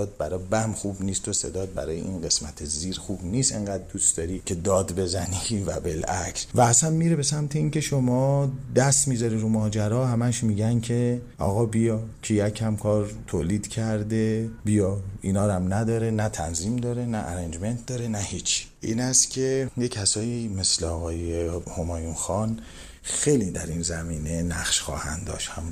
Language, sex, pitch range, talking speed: Persian, male, 85-115 Hz, 160 wpm